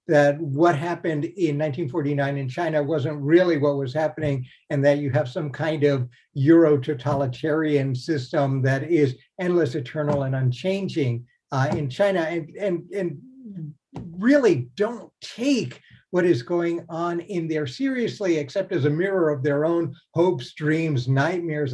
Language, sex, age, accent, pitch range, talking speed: English, male, 60-79, American, 140-175 Hz, 145 wpm